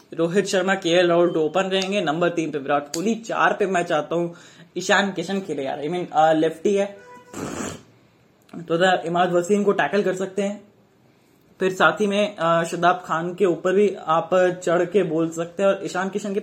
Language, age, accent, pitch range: Hindi, 20-39, native, 160-190 Hz